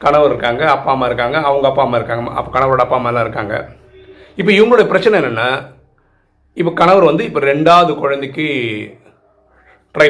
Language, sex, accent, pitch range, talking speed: Tamil, male, native, 135-175 Hz, 150 wpm